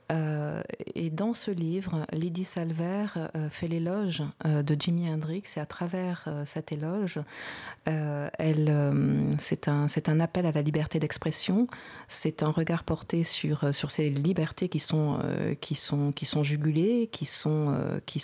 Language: French